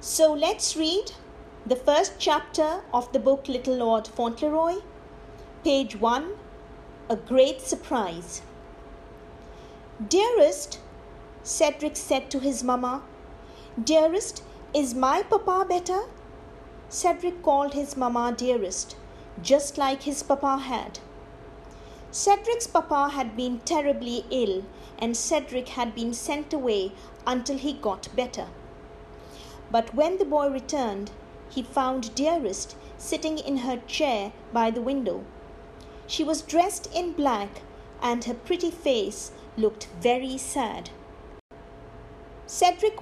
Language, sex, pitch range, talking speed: English, female, 240-315 Hz, 115 wpm